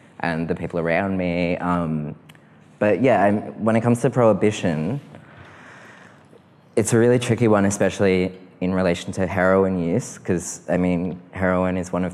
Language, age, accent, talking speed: English, 20-39, Australian, 155 wpm